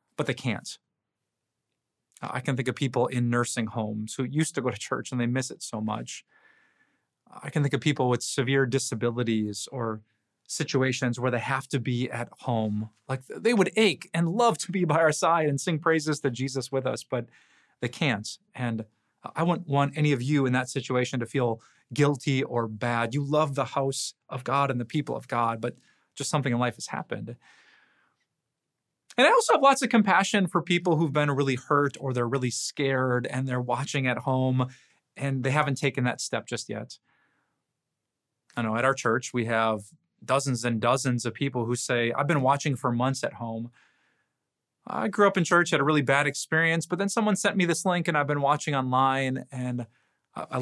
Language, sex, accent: English, male, American